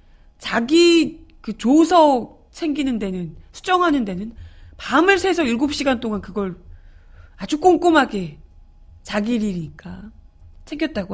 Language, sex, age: Korean, female, 30-49